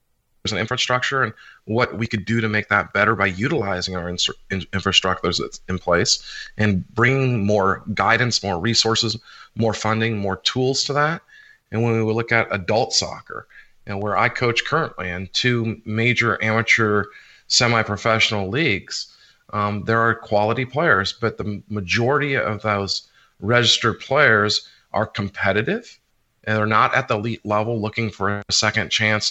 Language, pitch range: English, 100-115 Hz